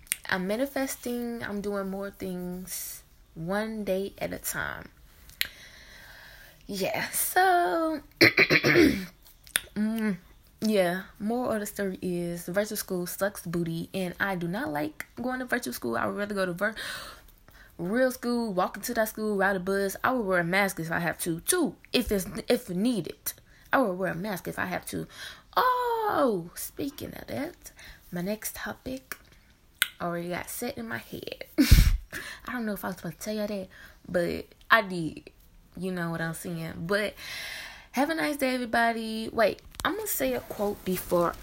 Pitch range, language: 185-255 Hz, English